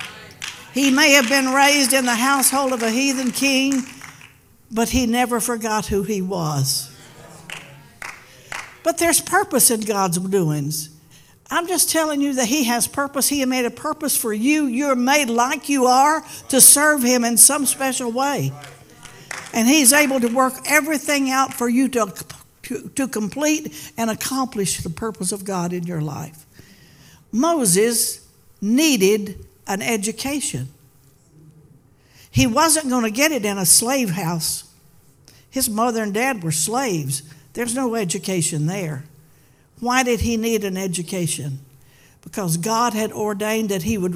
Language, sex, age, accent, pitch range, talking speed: English, female, 60-79, American, 165-265 Hz, 150 wpm